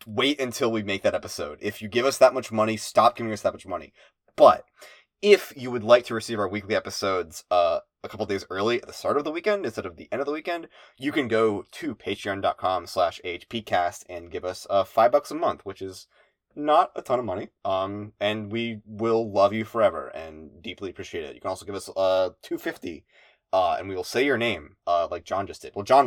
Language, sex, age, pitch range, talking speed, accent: English, male, 20-39, 95-120 Hz, 230 wpm, American